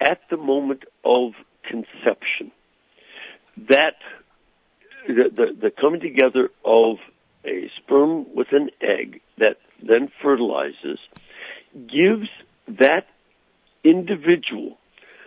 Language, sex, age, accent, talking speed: English, male, 60-79, American, 90 wpm